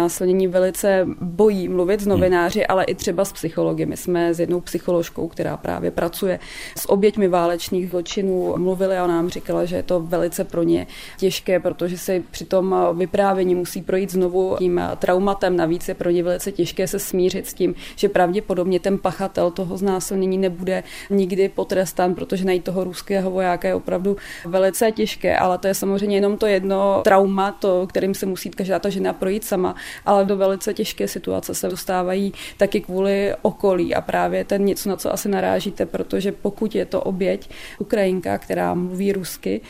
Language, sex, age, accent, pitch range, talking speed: Czech, female, 20-39, native, 180-195 Hz, 170 wpm